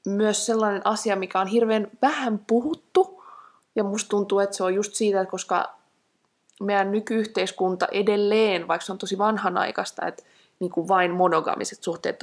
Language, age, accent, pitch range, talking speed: Finnish, 20-39, native, 185-255 Hz, 150 wpm